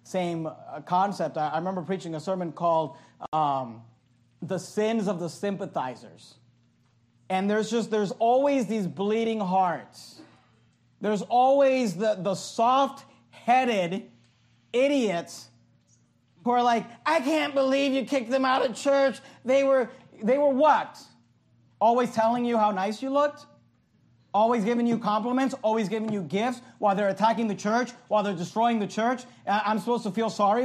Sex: male